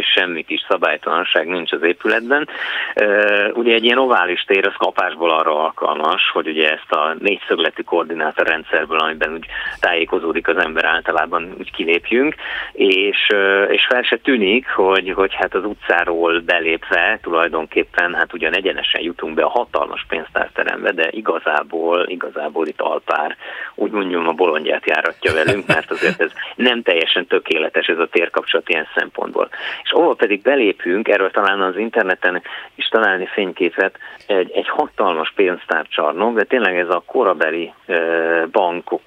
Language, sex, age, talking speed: Hungarian, male, 30-49, 150 wpm